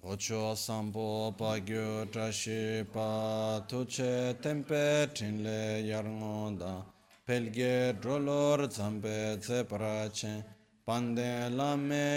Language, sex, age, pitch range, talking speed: Italian, male, 30-49, 105-130 Hz, 60 wpm